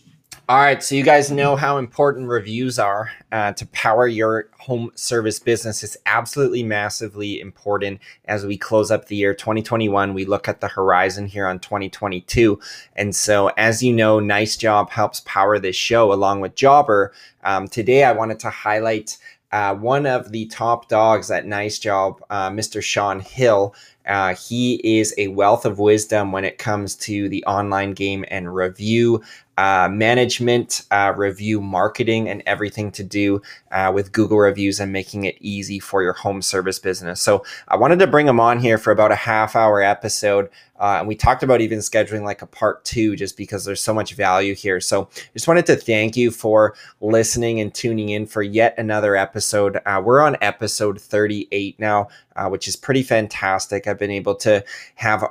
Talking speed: 185 wpm